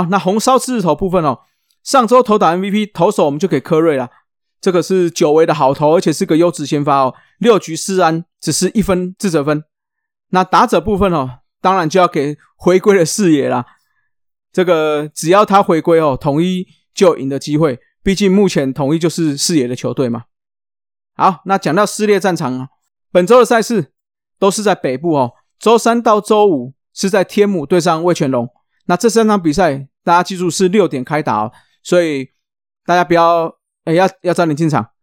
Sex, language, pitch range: male, Chinese, 150-190 Hz